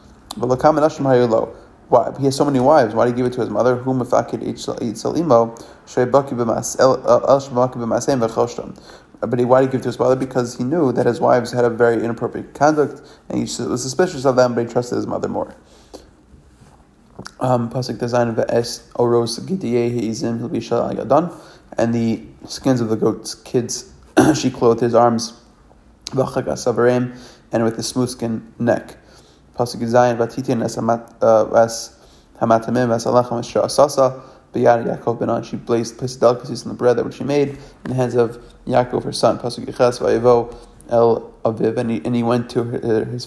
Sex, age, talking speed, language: male, 30-49, 120 wpm, English